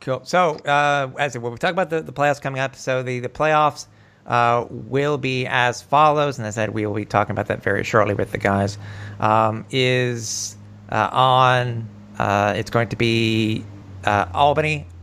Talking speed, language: 190 wpm, English